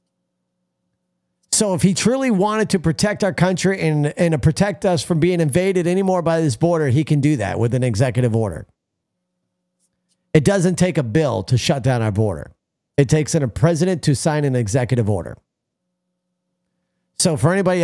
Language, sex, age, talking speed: English, male, 40-59, 170 wpm